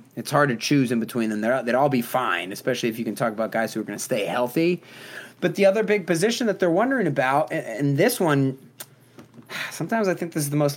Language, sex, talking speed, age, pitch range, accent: English, male, 245 wpm, 20-39, 125-180 Hz, American